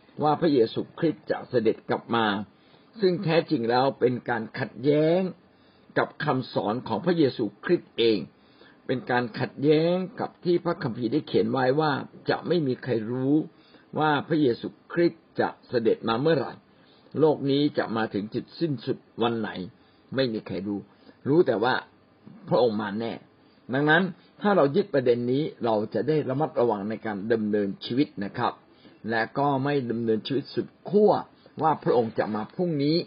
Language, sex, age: Thai, male, 60-79